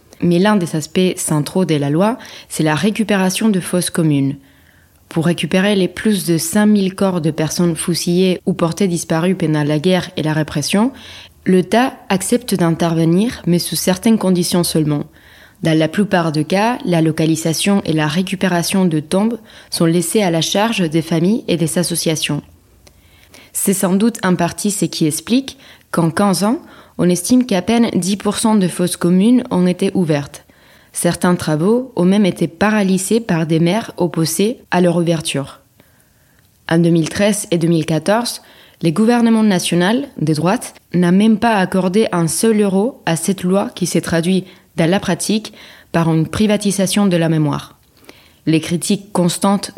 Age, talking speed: 20-39, 160 wpm